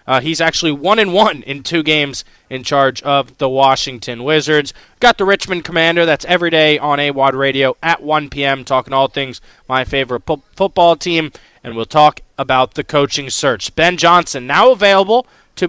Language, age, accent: English, 20-39, American